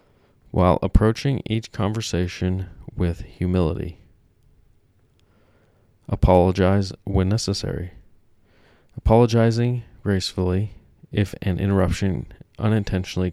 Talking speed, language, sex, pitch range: 70 wpm, English, male, 90-110 Hz